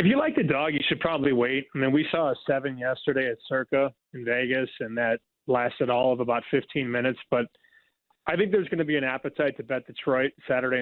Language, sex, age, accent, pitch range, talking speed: English, male, 30-49, American, 130-175 Hz, 225 wpm